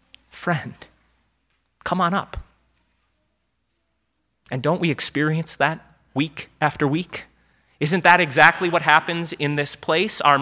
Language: English